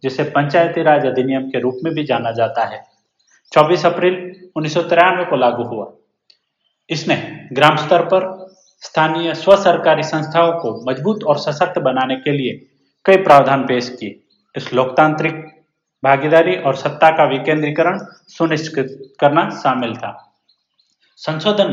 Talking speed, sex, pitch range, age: 135 wpm, male, 145-185 Hz, 30-49